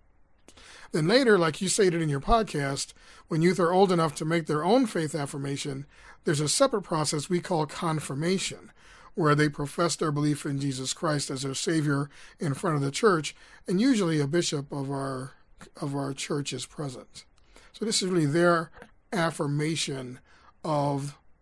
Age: 40-59